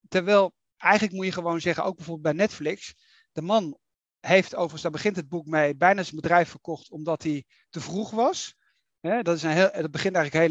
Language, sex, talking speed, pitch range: Dutch, male, 190 wpm, 165-200 Hz